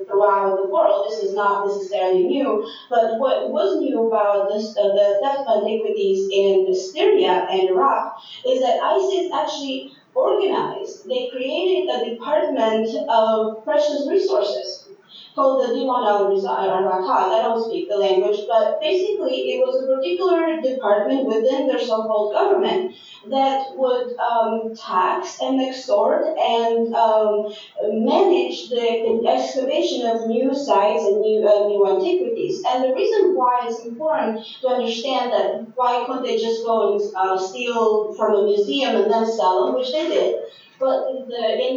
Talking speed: 145 wpm